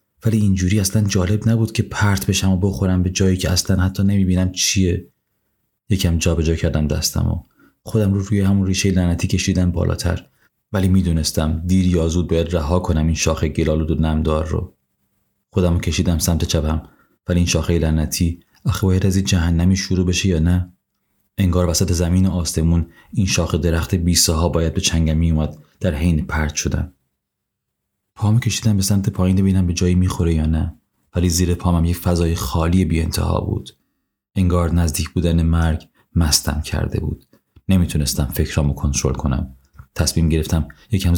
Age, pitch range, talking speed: 30-49, 80-95 Hz, 160 wpm